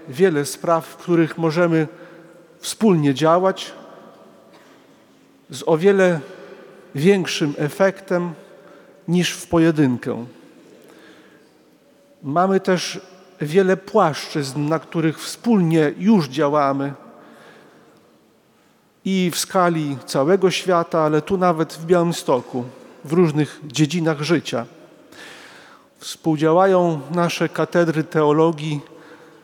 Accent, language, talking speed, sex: native, Polish, 85 wpm, male